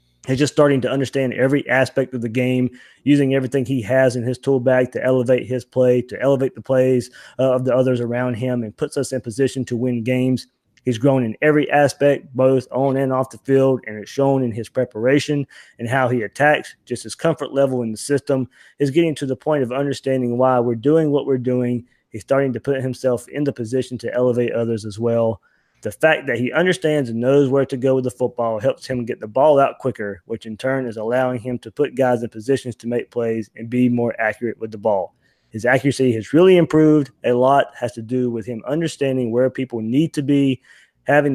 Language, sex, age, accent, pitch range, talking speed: English, male, 20-39, American, 120-135 Hz, 220 wpm